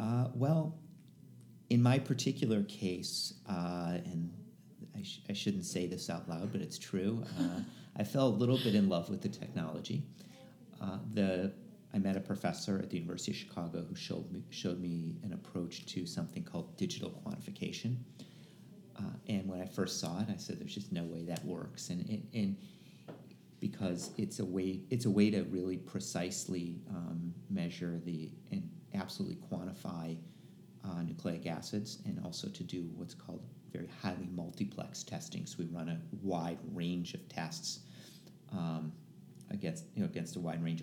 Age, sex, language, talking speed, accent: 40-59, male, English, 170 wpm, American